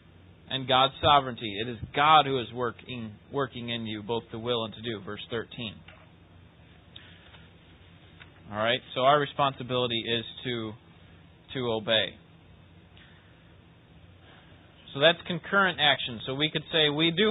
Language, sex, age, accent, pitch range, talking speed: English, male, 30-49, American, 100-155 Hz, 130 wpm